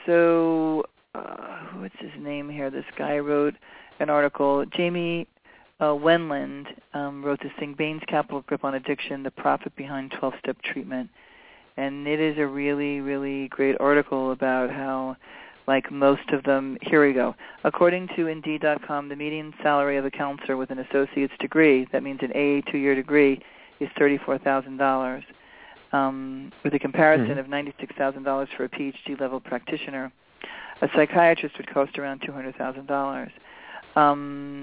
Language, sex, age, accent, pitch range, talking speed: English, male, 40-59, American, 135-150 Hz, 145 wpm